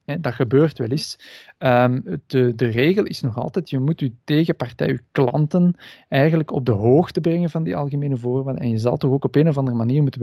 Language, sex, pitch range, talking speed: Dutch, male, 120-140 Hz, 205 wpm